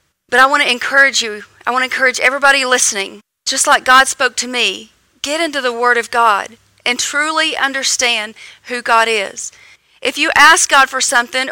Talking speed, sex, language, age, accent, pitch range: 190 wpm, female, English, 40-59, American, 230-280 Hz